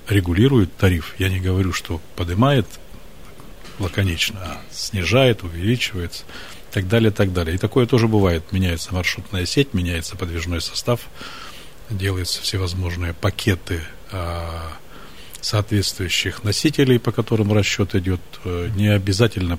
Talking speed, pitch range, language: 110 wpm, 90-110 Hz, Russian